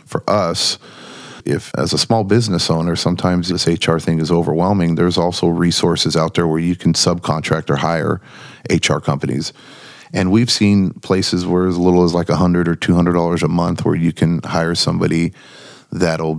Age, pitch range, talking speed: 30-49, 80-90 Hz, 185 wpm